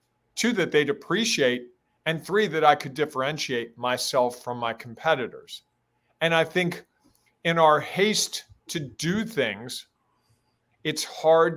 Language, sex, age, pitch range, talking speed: English, male, 40-59, 135-165 Hz, 130 wpm